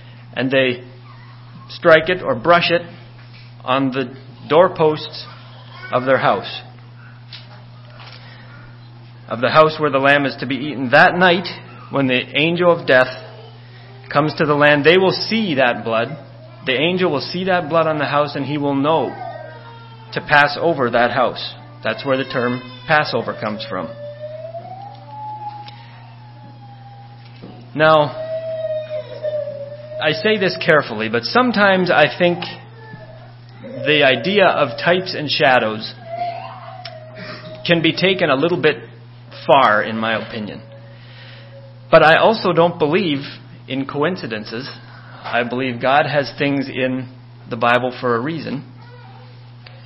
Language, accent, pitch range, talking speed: English, American, 120-150 Hz, 130 wpm